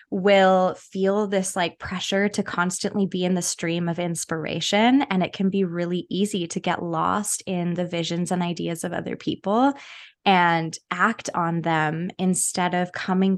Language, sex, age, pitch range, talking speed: English, female, 20-39, 170-195 Hz, 165 wpm